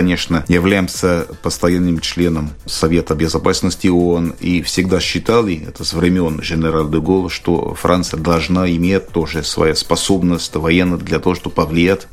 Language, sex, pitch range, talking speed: Russian, male, 85-95 Hz, 135 wpm